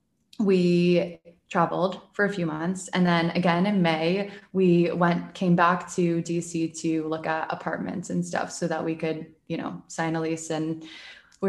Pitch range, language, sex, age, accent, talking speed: 160-185 Hz, English, female, 20-39, American, 180 wpm